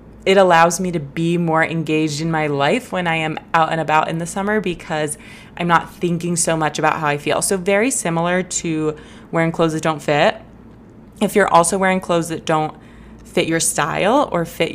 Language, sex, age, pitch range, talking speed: English, female, 20-39, 160-195 Hz, 205 wpm